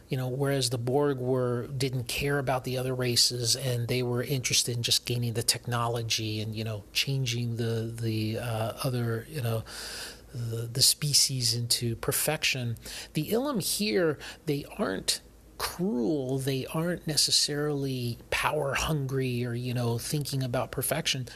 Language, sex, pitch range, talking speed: English, male, 120-145 Hz, 150 wpm